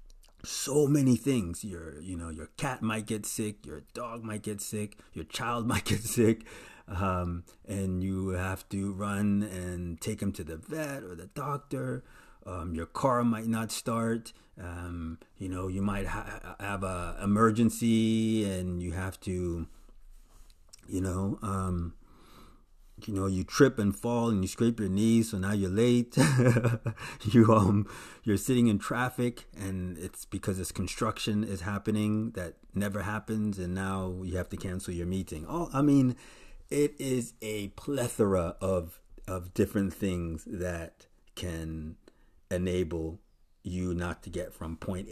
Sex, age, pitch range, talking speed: male, 30-49, 90-115 Hz, 155 wpm